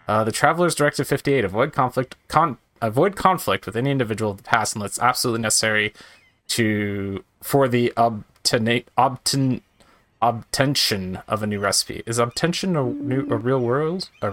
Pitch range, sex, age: 105-160 Hz, male, 20-39